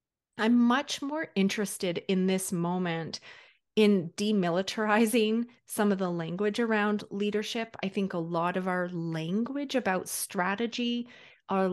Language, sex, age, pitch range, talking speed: English, female, 30-49, 180-225 Hz, 130 wpm